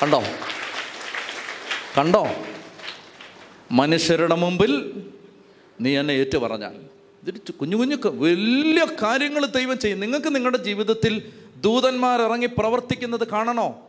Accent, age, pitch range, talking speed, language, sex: native, 30-49, 195-250 Hz, 80 wpm, Malayalam, male